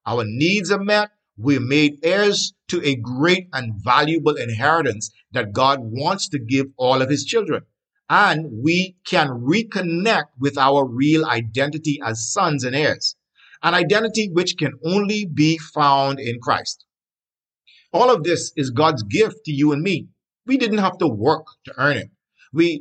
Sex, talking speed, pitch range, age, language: male, 165 wpm, 135-180 Hz, 50-69, English